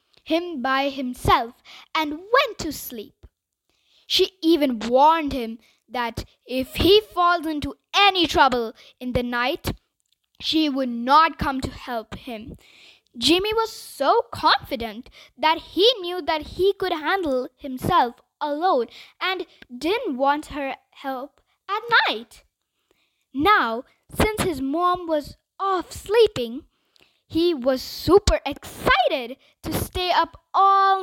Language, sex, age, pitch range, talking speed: English, female, 20-39, 260-365 Hz, 120 wpm